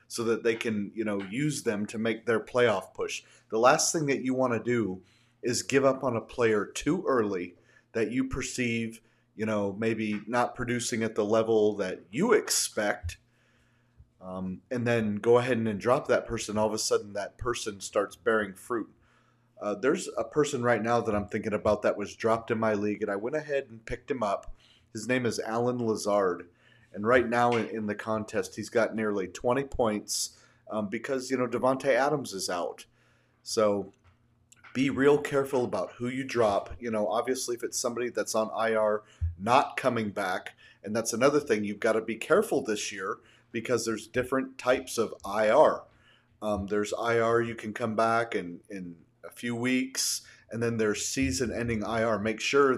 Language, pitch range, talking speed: English, 110-125 Hz, 190 wpm